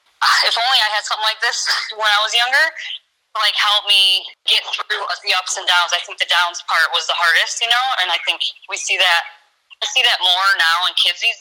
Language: English